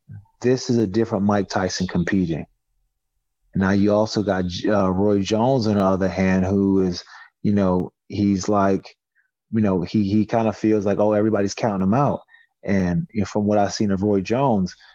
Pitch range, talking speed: 95-110 Hz, 180 wpm